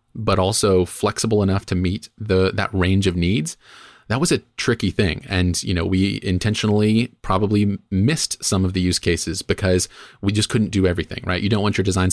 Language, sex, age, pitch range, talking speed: English, male, 30-49, 90-105 Hz, 200 wpm